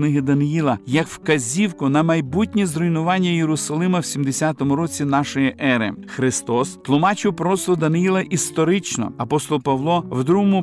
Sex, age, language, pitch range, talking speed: male, 50-69, Ukrainian, 140-175 Hz, 125 wpm